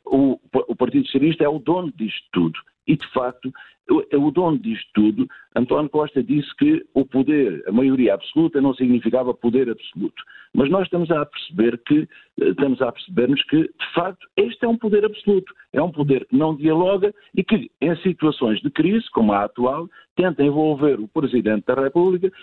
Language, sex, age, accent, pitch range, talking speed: Portuguese, male, 50-69, Portuguese, 130-180 Hz, 180 wpm